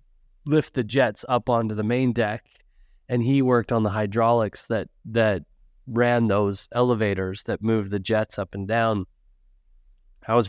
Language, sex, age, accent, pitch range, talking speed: English, male, 20-39, American, 110-145 Hz, 160 wpm